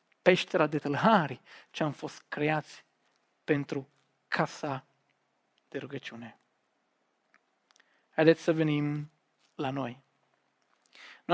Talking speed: 85 wpm